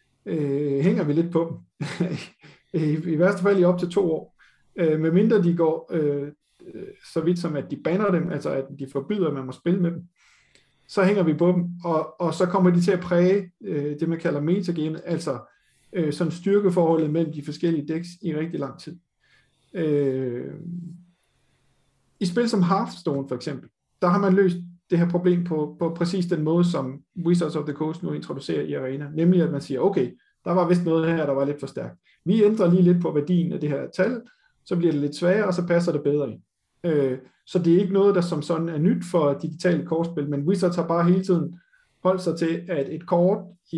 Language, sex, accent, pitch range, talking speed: Danish, male, native, 145-180 Hz, 215 wpm